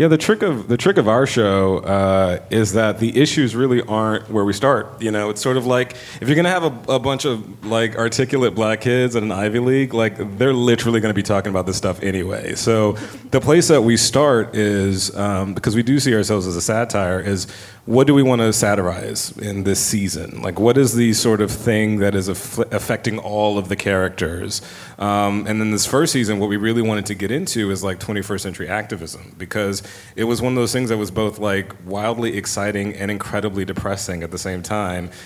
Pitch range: 100-120 Hz